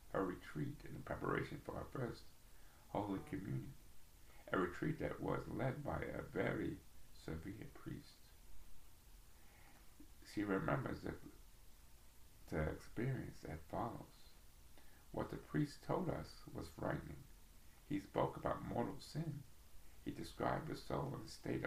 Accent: American